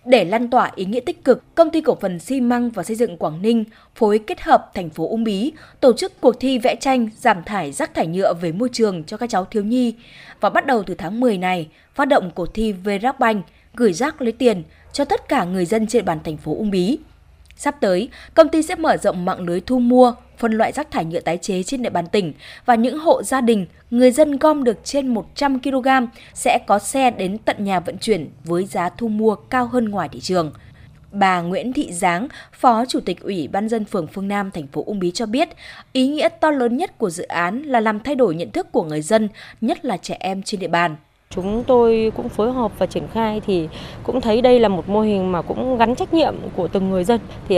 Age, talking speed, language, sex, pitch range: 20-39, 240 wpm, Vietnamese, female, 185-250 Hz